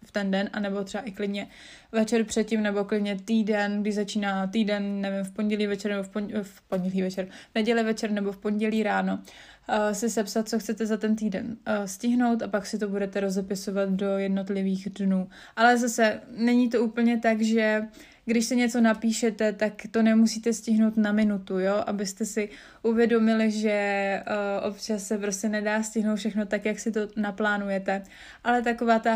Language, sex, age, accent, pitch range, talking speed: Czech, female, 20-39, native, 195-220 Hz, 170 wpm